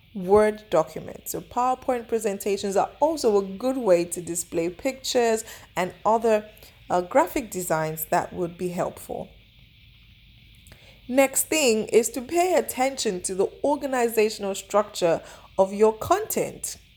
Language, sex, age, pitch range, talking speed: English, female, 20-39, 175-255 Hz, 125 wpm